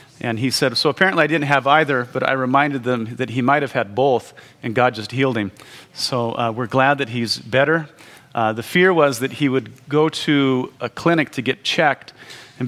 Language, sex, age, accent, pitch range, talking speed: English, male, 40-59, American, 120-145 Hz, 220 wpm